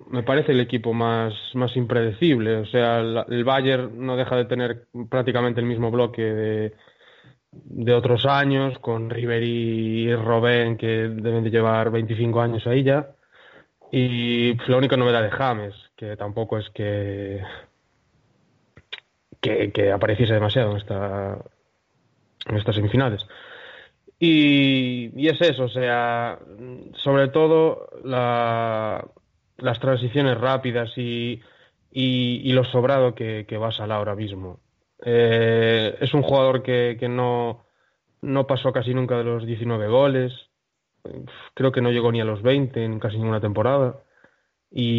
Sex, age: male, 20-39